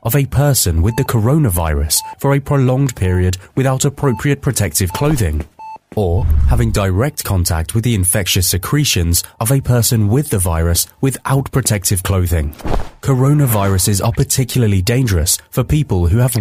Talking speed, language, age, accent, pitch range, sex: 145 wpm, English, 30-49, British, 95-130 Hz, male